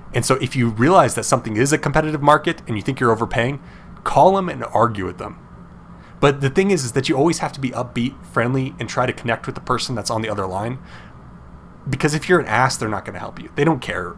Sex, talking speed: male, 260 wpm